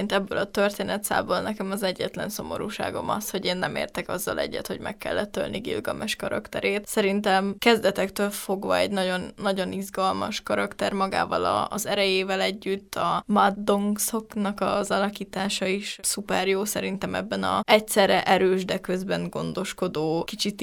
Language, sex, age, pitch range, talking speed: Hungarian, female, 10-29, 180-205 Hz, 135 wpm